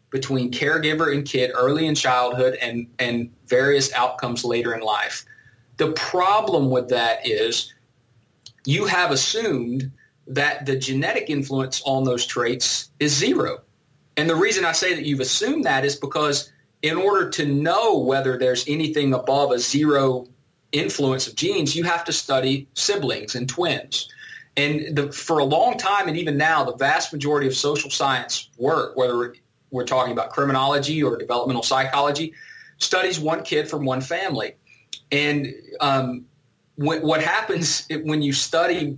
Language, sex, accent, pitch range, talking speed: English, male, American, 125-150 Hz, 150 wpm